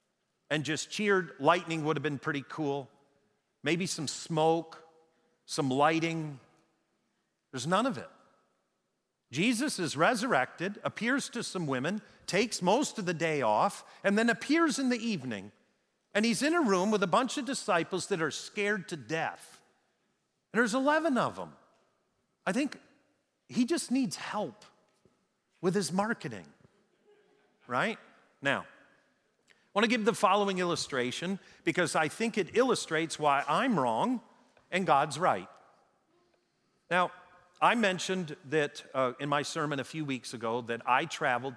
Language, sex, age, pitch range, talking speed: English, male, 40-59, 130-205 Hz, 145 wpm